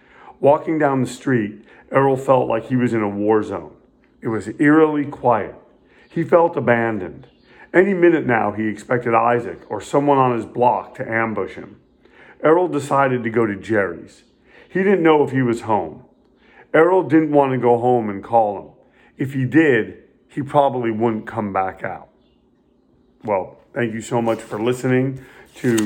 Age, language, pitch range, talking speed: 40-59, English, 115-135 Hz, 170 wpm